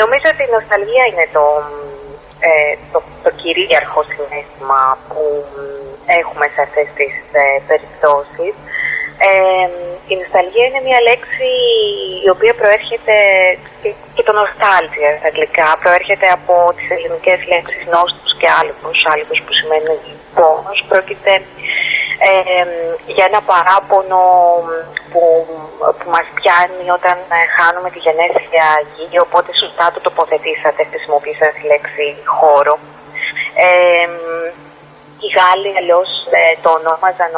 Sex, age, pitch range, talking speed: female, 30-49, 155-200 Hz, 110 wpm